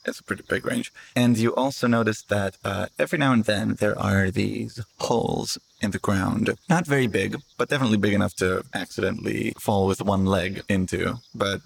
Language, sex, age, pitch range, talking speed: English, male, 20-39, 95-120 Hz, 190 wpm